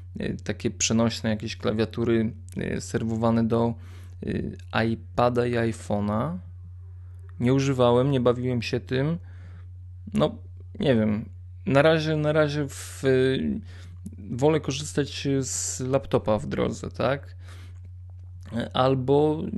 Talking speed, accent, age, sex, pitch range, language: 90 wpm, native, 20-39, male, 90-130 Hz, Polish